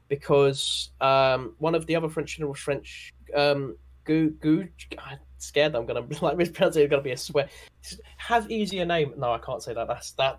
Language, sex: English, male